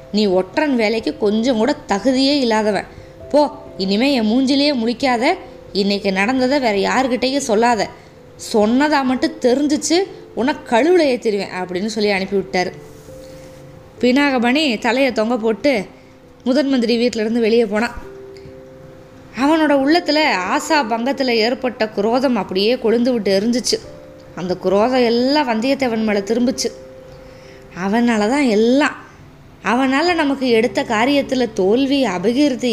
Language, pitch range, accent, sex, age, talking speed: Tamil, 195-275 Hz, native, female, 20-39, 110 wpm